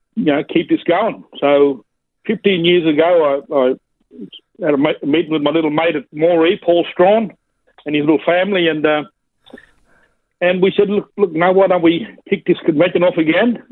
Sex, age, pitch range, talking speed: male, 60-79, 140-185 Hz, 195 wpm